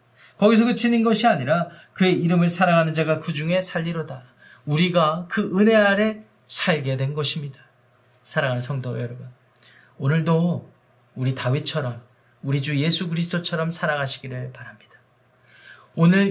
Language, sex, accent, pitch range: Korean, male, native, 130-190 Hz